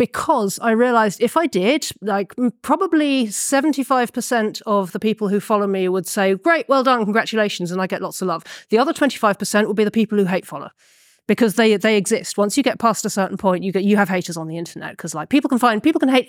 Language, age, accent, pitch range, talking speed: English, 40-59, British, 190-235 Hz, 235 wpm